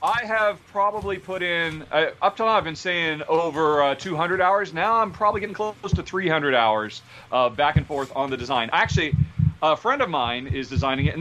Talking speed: 215 wpm